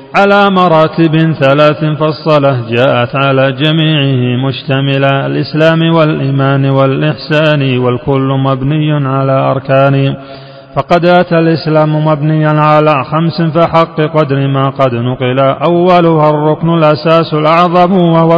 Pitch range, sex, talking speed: 140-170 Hz, male, 100 wpm